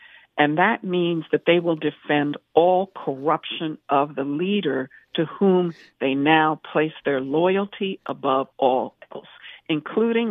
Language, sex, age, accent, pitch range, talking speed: English, female, 60-79, American, 150-185 Hz, 135 wpm